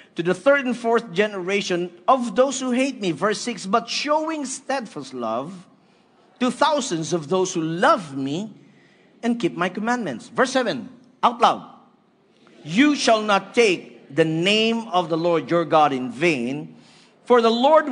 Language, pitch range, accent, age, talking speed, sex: English, 130-210 Hz, Filipino, 50-69, 160 wpm, male